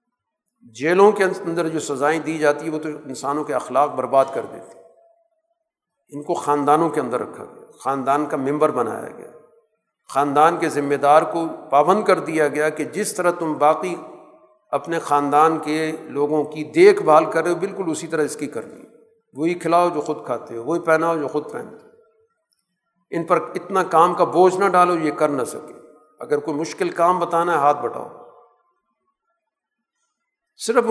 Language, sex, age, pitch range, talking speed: Urdu, male, 50-69, 150-210 Hz, 180 wpm